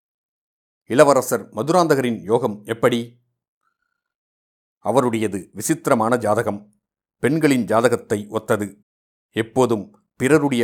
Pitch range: 110-145 Hz